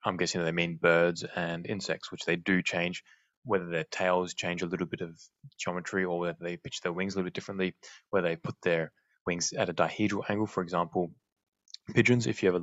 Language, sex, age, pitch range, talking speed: English, male, 20-39, 85-105 Hz, 215 wpm